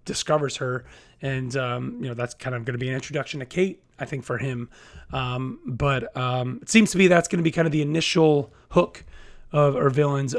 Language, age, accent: English, 30-49, American